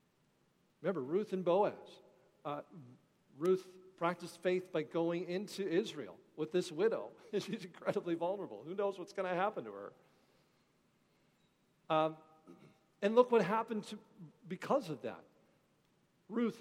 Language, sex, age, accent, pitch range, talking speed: English, male, 50-69, American, 175-240 Hz, 125 wpm